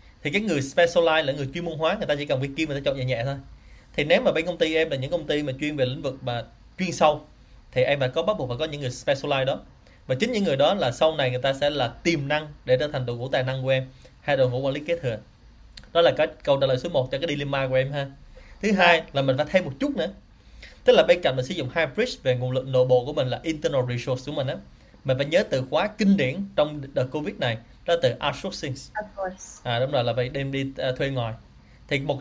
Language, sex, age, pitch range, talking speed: Vietnamese, male, 20-39, 125-155 Hz, 285 wpm